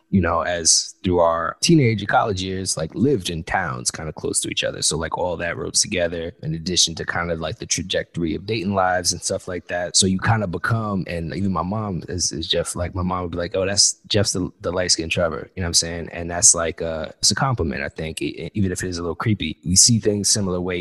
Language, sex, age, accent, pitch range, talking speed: English, male, 20-39, American, 85-105 Hz, 260 wpm